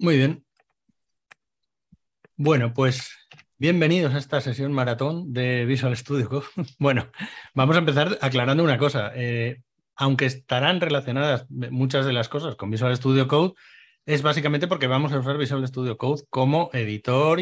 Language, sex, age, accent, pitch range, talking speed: Spanish, male, 30-49, Spanish, 120-155 Hz, 150 wpm